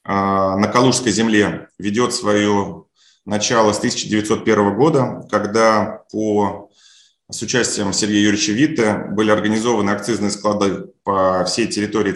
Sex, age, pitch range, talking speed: male, 30-49, 100-120 Hz, 110 wpm